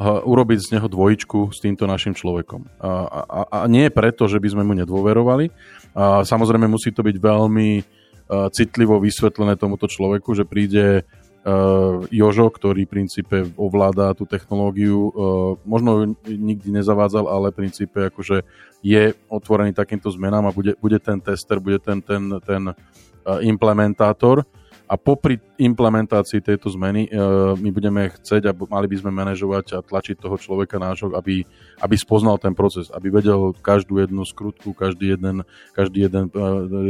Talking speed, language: 145 wpm, Slovak